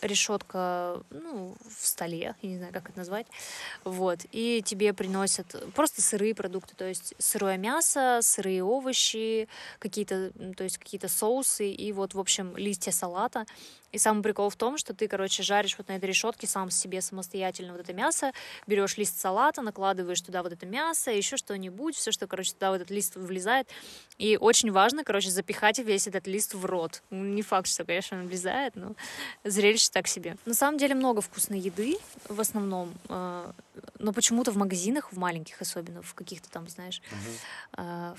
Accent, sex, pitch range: native, female, 185-220 Hz